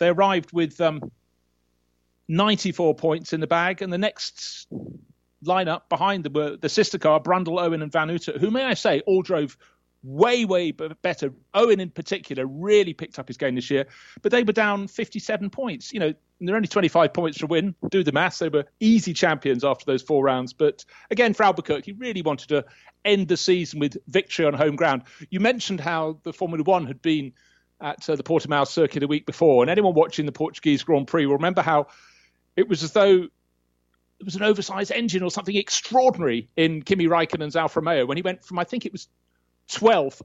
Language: English